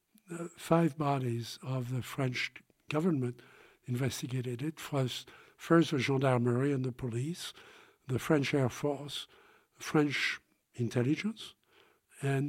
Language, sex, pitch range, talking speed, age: English, male, 130-170 Hz, 110 wpm, 60-79